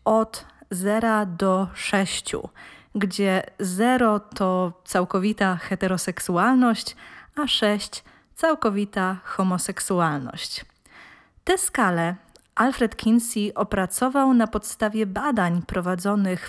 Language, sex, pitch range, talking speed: Polish, female, 185-225 Hz, 80 wpm